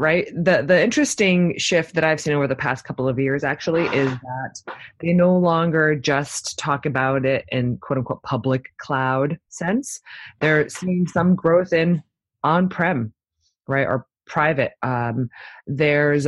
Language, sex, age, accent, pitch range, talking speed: English, female, 20-39, American, 125-165 Hz, 155 wpm